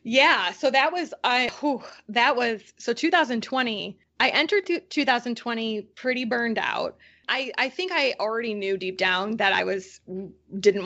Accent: American